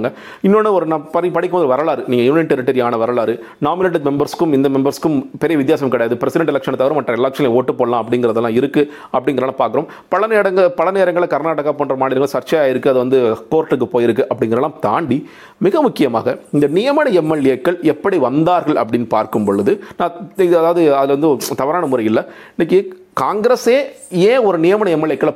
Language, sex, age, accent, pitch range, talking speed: Tamil, male, 40-59, native, 140-195 Hz, 150 wpm